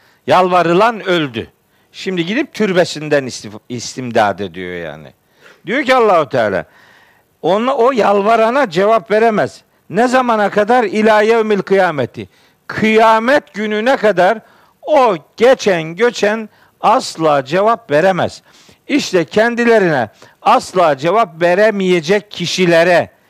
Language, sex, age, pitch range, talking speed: Turkish, male, 50-69, 150-225 Hz, 100 wpm